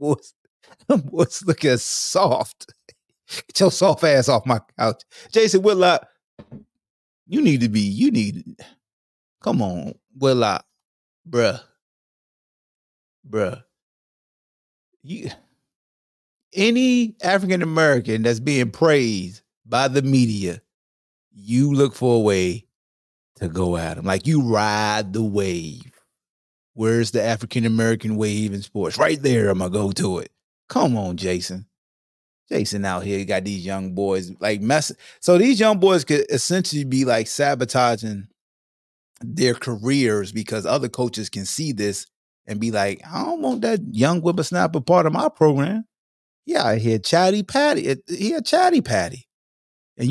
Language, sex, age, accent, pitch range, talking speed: English, male, 30-49, American, 100-160 Hz, 140 wpm